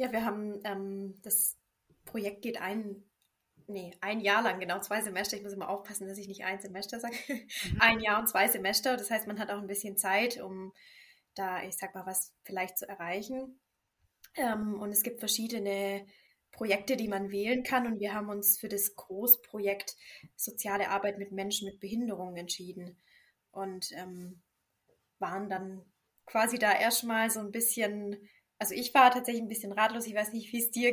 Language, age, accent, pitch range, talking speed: German, 20-39, German, 195-225 Hz, 180 wpm